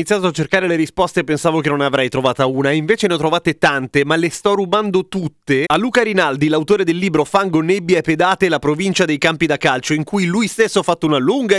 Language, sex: Italian, male